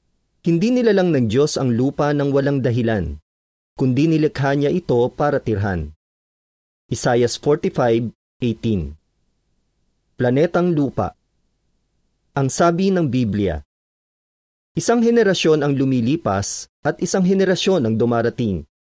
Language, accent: Filipino, native